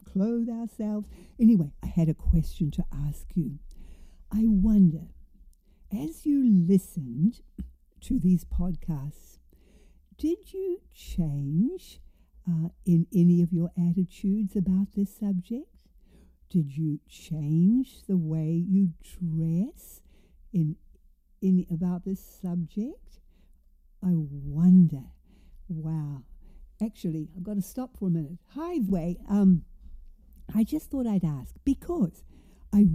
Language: English